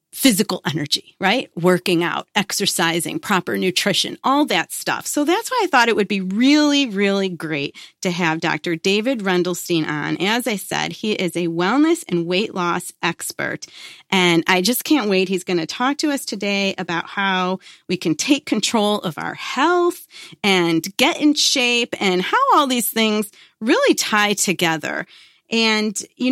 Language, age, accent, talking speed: English, 30-49, American, 170 wpm